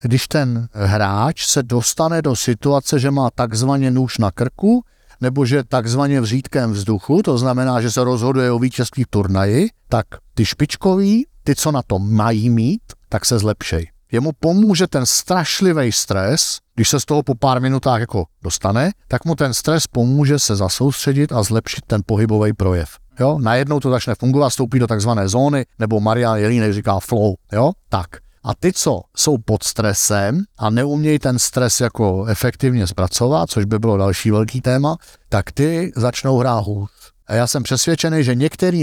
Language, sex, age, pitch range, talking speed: Slovak, male, 60-79, 110-140 Hz, 175 wpm